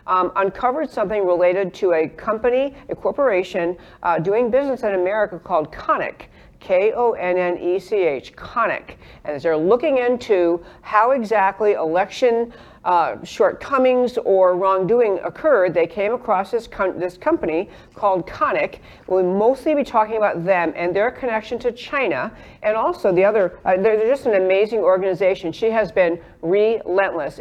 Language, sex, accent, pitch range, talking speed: English, female, American, 180-235 Hz, 140 wpm